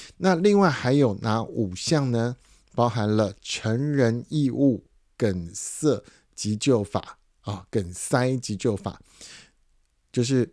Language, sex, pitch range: Chinese, male, 105-130 Hz